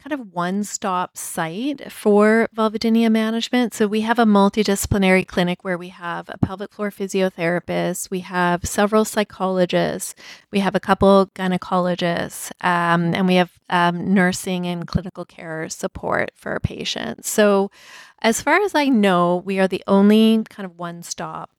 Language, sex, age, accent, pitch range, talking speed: English, female, 30-49, American, 175-215 Hz, 150 wpm